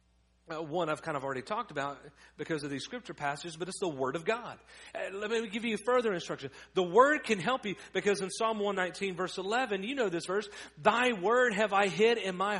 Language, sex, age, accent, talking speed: English, male, 40-59, American, 220 wpm